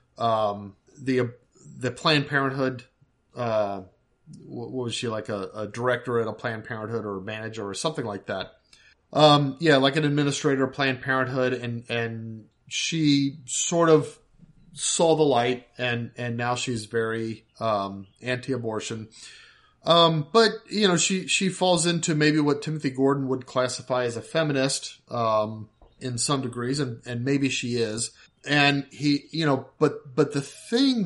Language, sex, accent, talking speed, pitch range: English, male, American, 160 wpm, 120-150 Hz